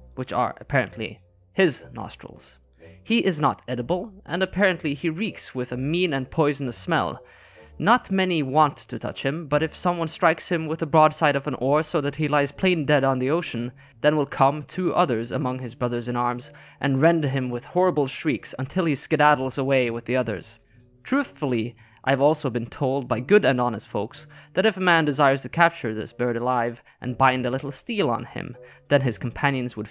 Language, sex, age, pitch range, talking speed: English, male, 20-39, 115-150 Hz, 200 wpm